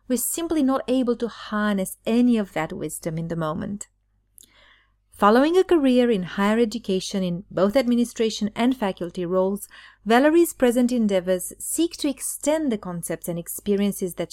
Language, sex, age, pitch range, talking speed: English, female, 30-49, 180-235 Hz, 150 wpm